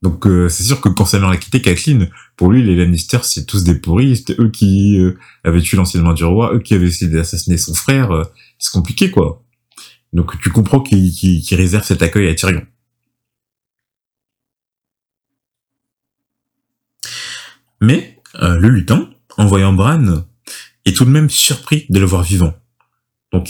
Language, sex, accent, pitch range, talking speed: French, male, French, 90-120 Hz, 165 wpm